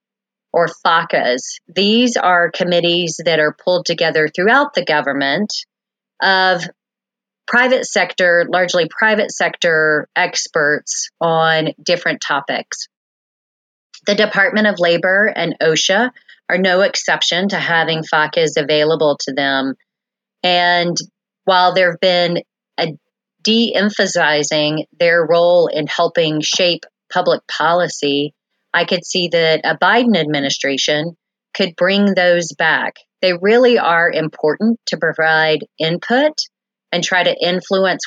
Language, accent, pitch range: English, American, 160-210 Hz